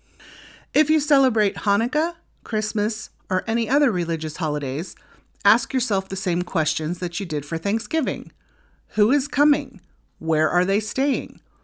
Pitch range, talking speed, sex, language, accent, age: 180-255 Hz, 140 wpm, female, English, American, 30-49